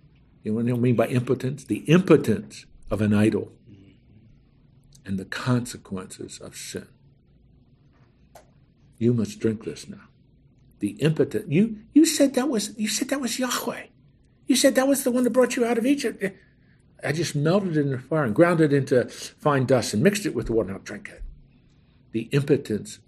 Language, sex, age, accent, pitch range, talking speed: English, male, 50-69, American, 120-170 Hz, 185 wpm